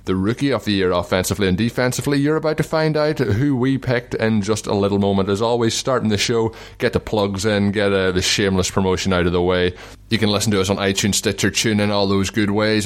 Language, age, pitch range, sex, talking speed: English, 20-39, 90-115 Hz, male, 245 wpm